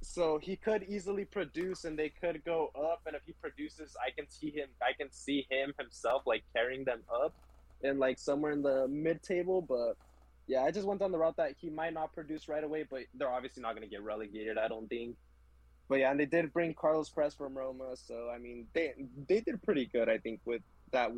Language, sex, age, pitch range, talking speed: English, male, 20-39, 125-160 Hz, 225 wpm